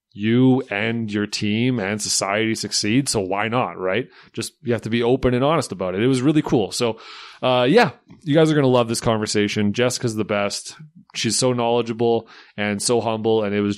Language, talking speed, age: English, 210 wpm, 30-49